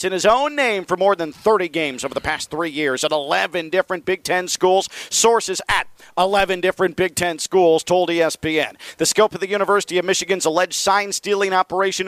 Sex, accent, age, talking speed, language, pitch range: male, American, 40-59, 195 wpm, English, 155-200 Hz